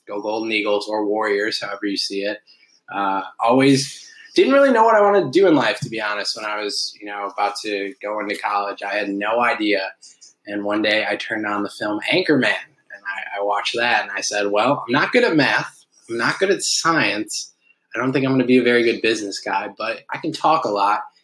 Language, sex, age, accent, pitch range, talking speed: English, male, 20-39, American, 105-140 Hz, 235 wpm